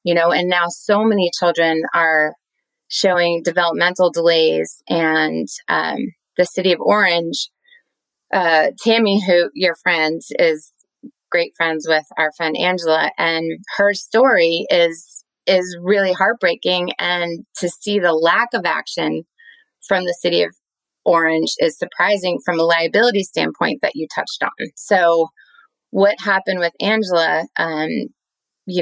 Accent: American